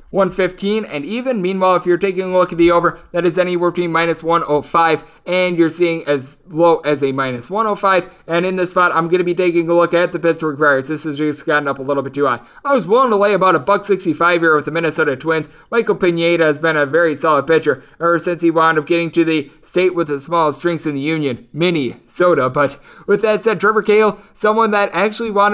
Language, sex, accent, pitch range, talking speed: English, male, American, 155-195 Hz, 235 wpm